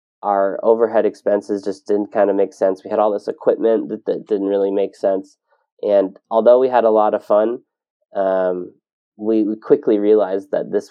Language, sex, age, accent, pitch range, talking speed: English, male, 20-39, American, 100-120 Hz, 195 wpm